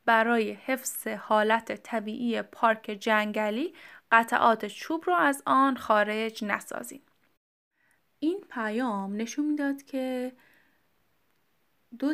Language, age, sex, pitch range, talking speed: Persian, 10-29, female, 210-265 Hz, 95 wpm